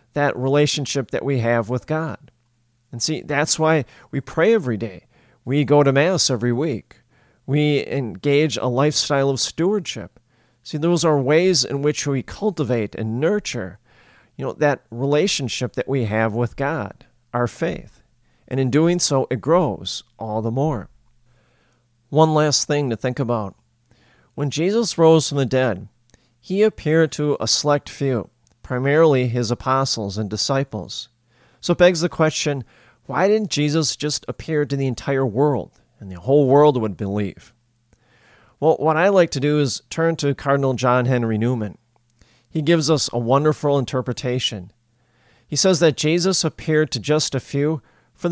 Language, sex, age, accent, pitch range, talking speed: English, male, 40-59, American, 120-150 Hz, 160 wpm